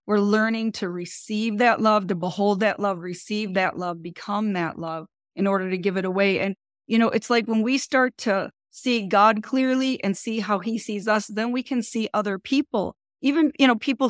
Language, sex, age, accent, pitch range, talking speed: English, female, 40-59, American, 195-240 Hz, 215 wpm